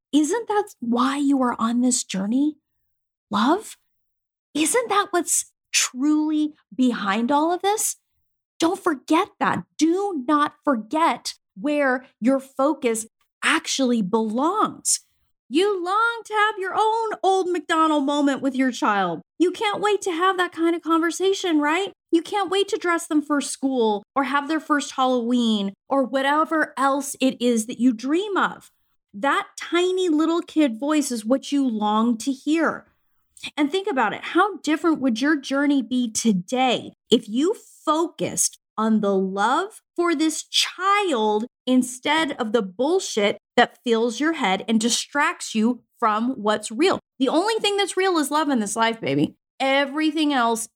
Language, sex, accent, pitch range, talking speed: English, female, American, 240-335 Hz, 155 wpm